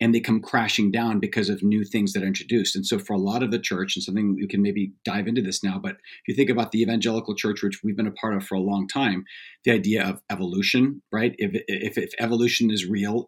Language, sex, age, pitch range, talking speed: English, male, 40-59, 100-130 Hz, 260 wpm